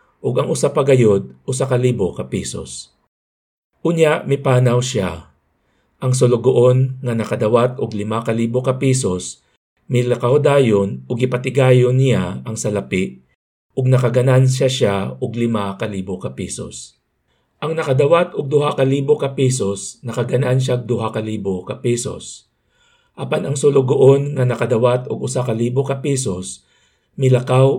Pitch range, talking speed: 105-135 Hz, 105 wpm